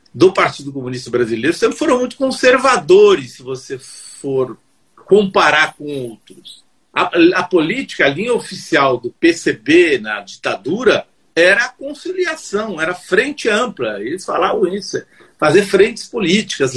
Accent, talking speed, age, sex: Brazilian, 125 wpm, 50-69, male